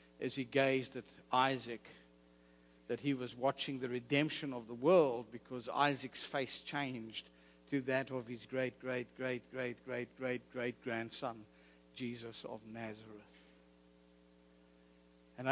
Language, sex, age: English, male, 60-79